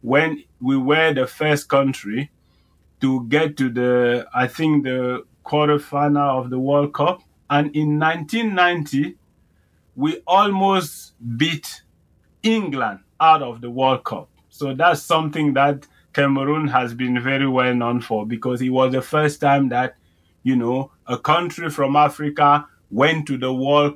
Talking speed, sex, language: 150 wpm, male, English